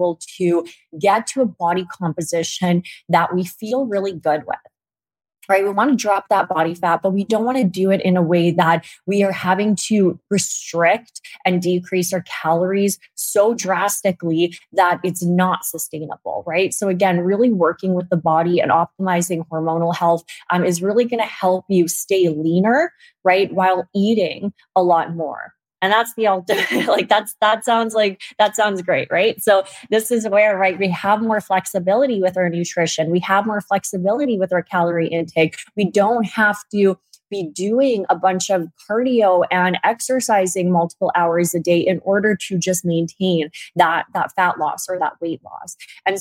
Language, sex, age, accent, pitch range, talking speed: English, female, 20-39, American, 175-205 Hz, 175 wpm